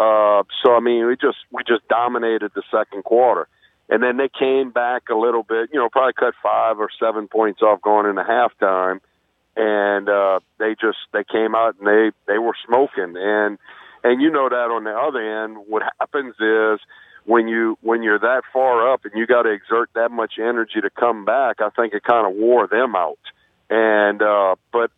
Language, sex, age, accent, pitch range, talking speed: English, male, 50-69, American, 105-120 Hz, 205 wpm